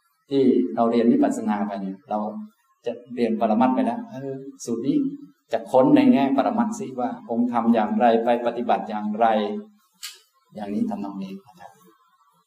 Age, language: 20-39, Thai